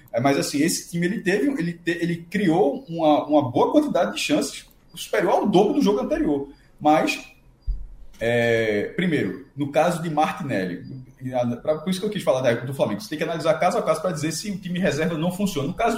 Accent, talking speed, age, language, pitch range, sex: Brazilian, 220 wpm, 20-39, Portuguese, 150-210 Hz, male